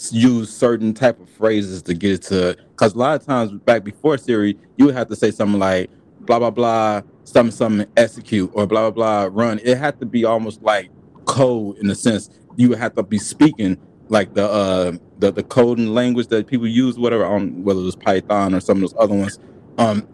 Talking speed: 225 wpm